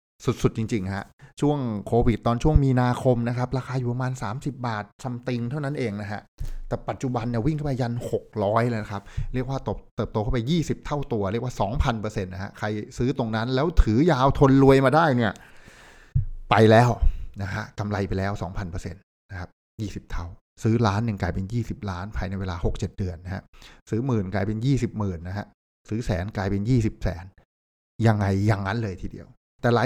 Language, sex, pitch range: Thai, male, 100-120 Hz